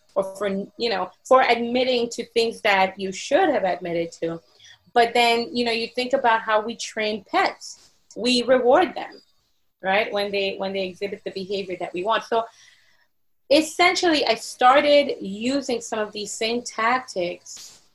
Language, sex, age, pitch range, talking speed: English, female, 30-49, 190-245 Hz, 165 wpm